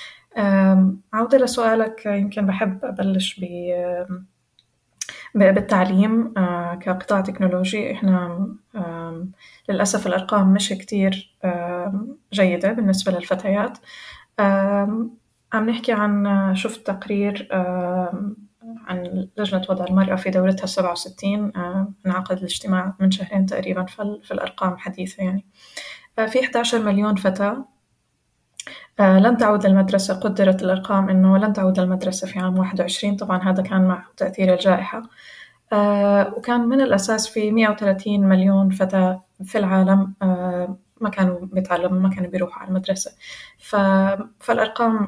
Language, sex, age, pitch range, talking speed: Arabic, female, 20-39, 185-210 Hz, 105 wpm